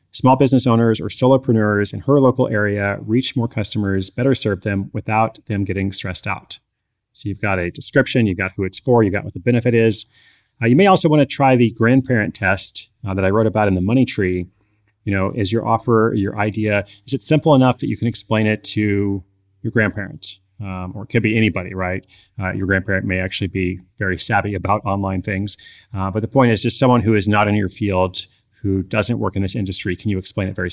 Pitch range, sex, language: 100-125 Hz, male, English